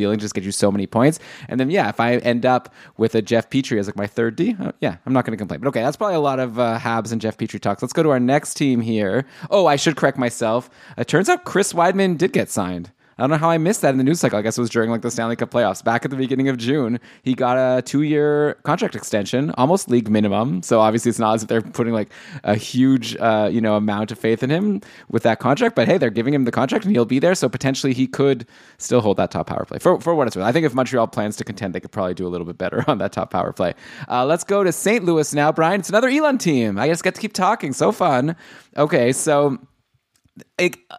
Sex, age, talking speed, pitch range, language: male, 20-39, 275 wpm, 110-145 Hz, English